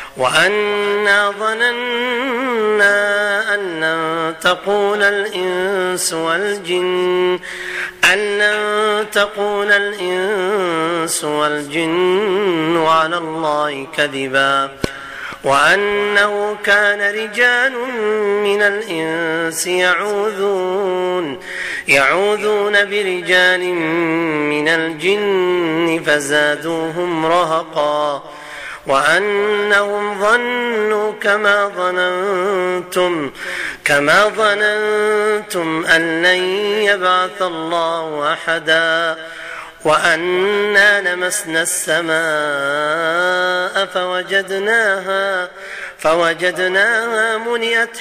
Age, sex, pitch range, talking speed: 40-59, male, 160-205 Hz, 50 wpm